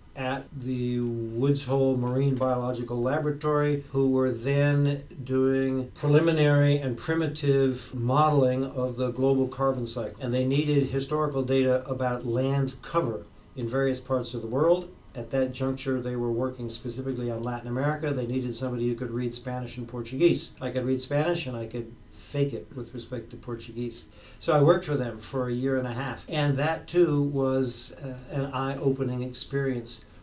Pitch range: 120-140 Hz